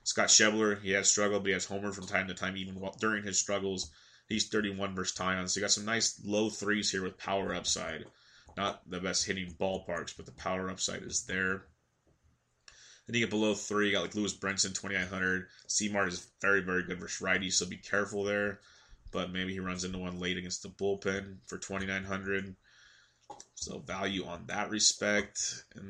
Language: English